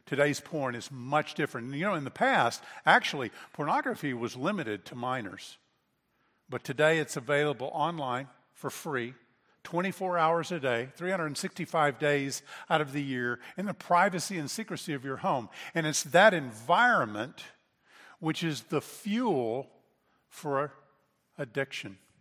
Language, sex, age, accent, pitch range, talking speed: English, male, 50-69, American, 135-170 Hz, 140 wpm